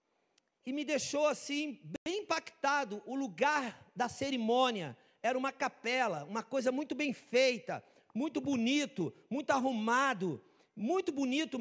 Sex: male